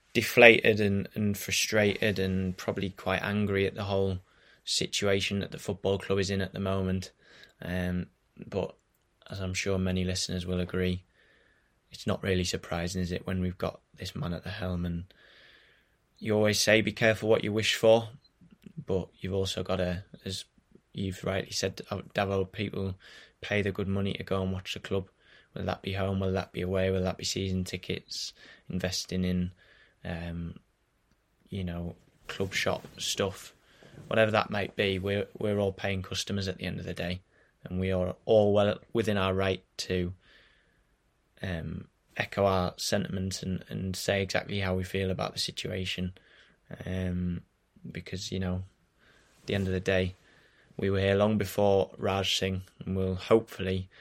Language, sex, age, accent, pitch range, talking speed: English, male, 20-39, British, 90-100 Hz, 170 wpm